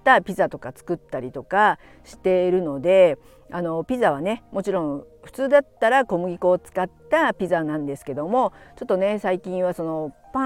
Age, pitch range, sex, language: 50-69, 170-240 Hz, female, Japanese